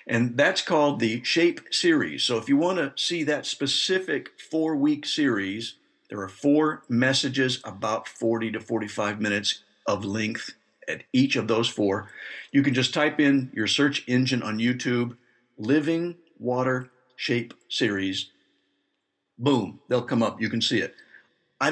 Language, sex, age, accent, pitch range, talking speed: English, male, 60-79, American, 115-145 Hz, 150 wpm